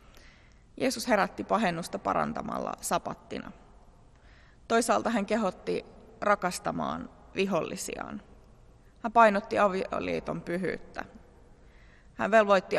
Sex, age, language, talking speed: female, 30-49, Finnish, 75 wpm